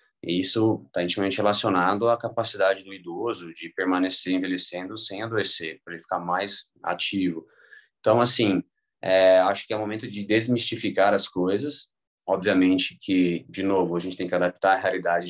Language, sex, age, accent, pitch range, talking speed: Portuguese, male, 20-39, Brazilian, 90-110 Hz, 155 wpm